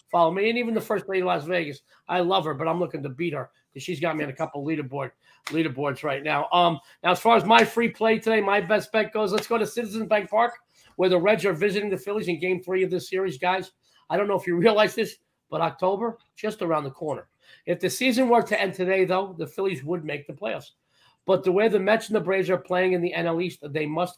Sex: male